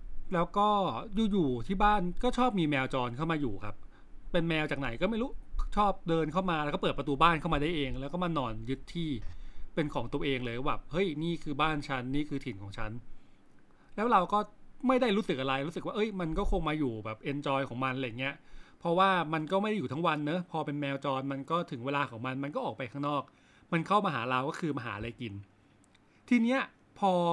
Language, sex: English, male